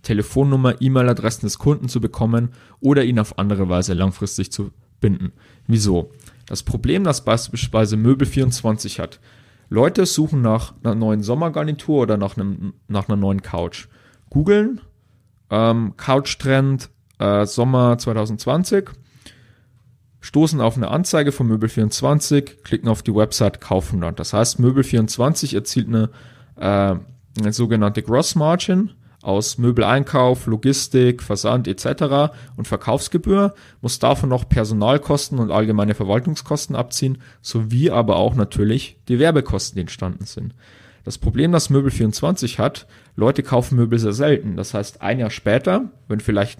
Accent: German